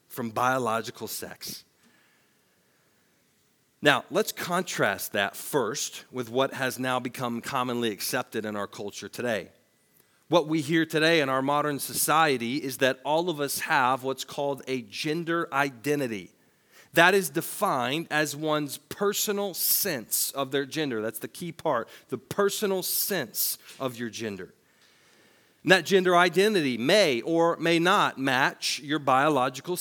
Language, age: English, 40-59